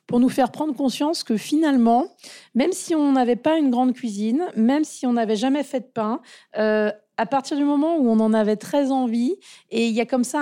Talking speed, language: 230 wpm, French